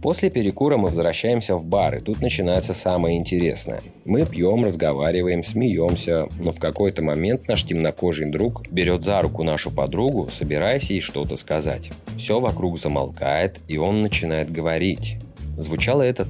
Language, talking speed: Russian, 145 wpm